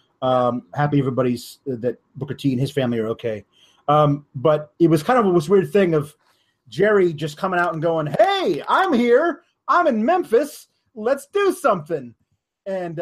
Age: 30-49